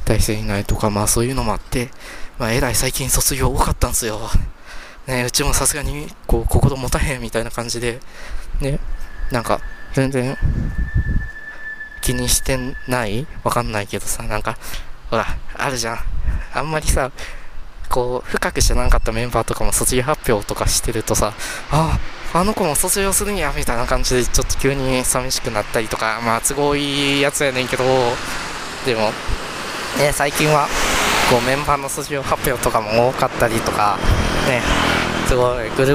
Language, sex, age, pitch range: Japanese, male, 20-39, 115-140 Hz